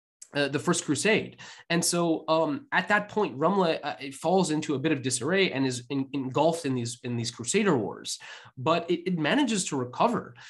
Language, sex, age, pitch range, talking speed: English, male, 20-39, 135-175 Hz, 200 wpm